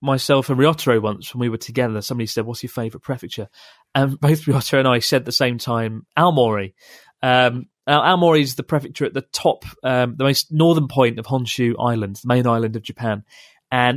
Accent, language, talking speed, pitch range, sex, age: British, English, 205 wpm, 120-145 Hz, male, 30-49